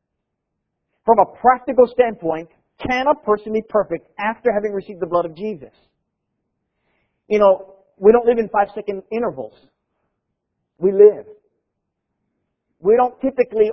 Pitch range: 150-235 Hz